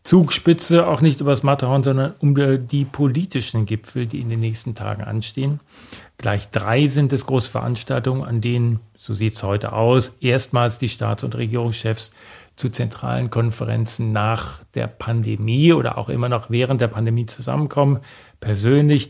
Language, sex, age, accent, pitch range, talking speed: German, male, 40-59, German, 110-135 Hz, 155 wpm